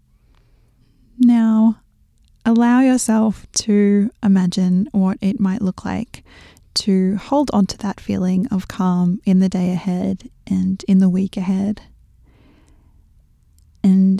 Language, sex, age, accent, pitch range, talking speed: English, female, 20-39, Australian, 190-220 Hz, 120 wpm